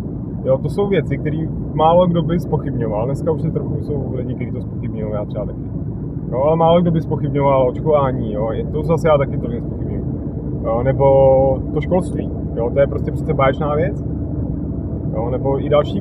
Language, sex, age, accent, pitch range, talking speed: Czech, male, 30-49, native, 130-155 Hz, 190 wpm